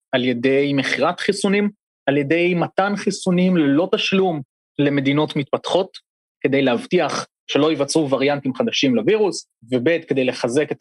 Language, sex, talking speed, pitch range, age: Hebrew, male, 130 wpm, 135-220 Hz, 30-49